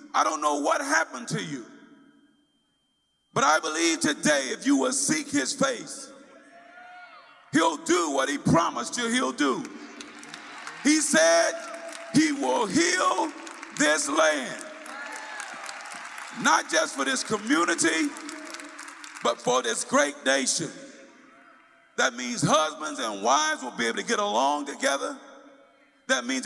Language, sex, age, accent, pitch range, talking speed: English, male, 50-69, American, 220-290 Hz, 125 wpm